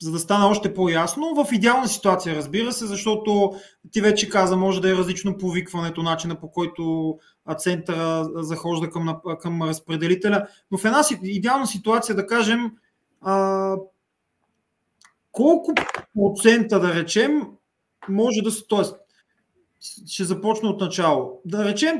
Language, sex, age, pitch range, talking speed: English, male, 30-49, 175-225 Hz, 130 wpm